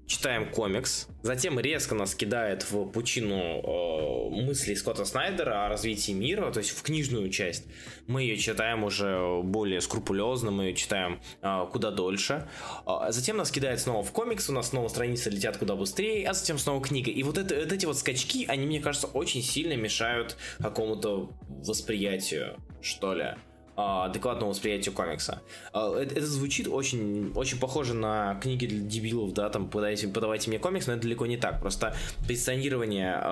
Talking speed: 160 wpm